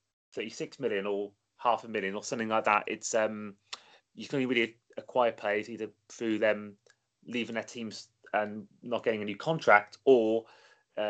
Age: 30-49